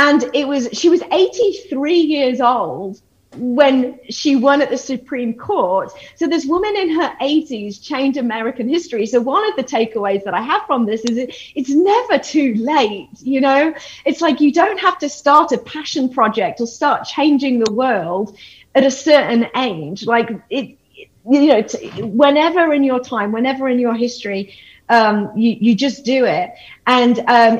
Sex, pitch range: female, 225-285 Hz